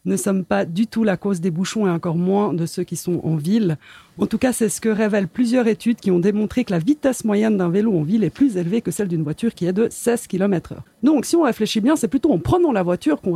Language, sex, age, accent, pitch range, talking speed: French, female, 40-59, French, 175-235 Hz, 285 wpm